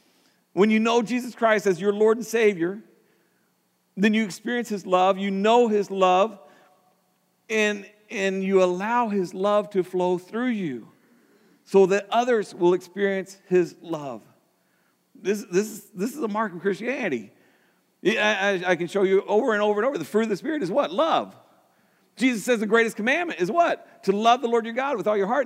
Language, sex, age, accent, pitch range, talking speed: English, male, 50-69, American, 195-235 Hz, 190 wpm